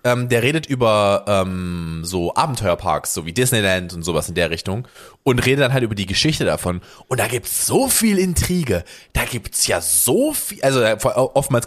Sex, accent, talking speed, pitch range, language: male, German, 195 wpm, 100-140 Hz, German